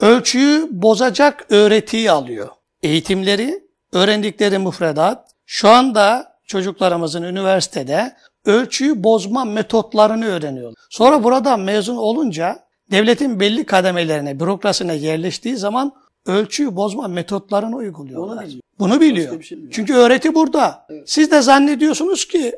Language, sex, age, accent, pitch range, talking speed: Turkish, male, 60-79, native, 190-255 Hz, 100 wpm